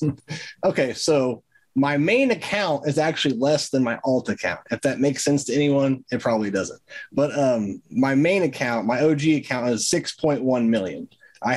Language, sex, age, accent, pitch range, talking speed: English, male, 20-39, American, 130-160 Hz, 170 wpm